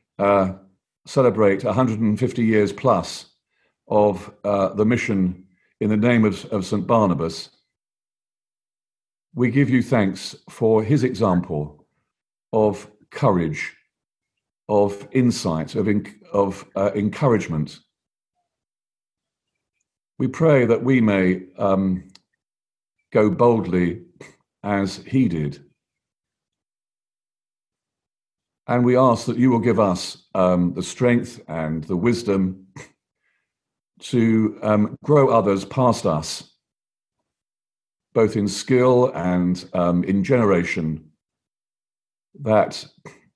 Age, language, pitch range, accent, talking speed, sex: 50-69, English, 95-120 Hz, British, 95 wpm, male